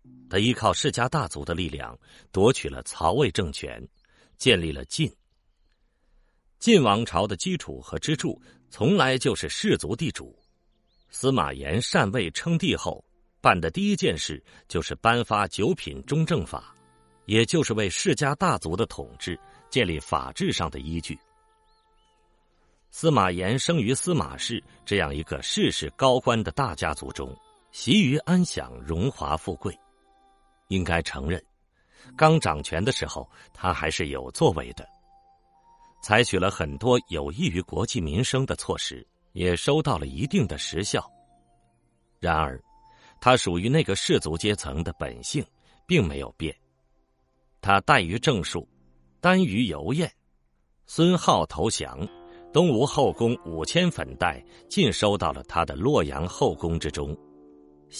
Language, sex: Chinese, male